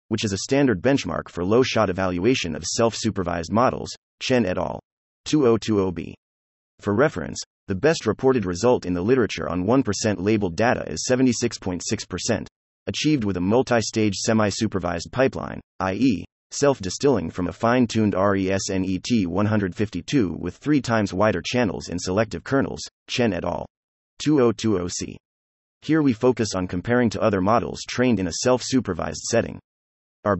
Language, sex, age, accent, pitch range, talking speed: English, male, 30-49, American, 90-120 Hz, 135 wpm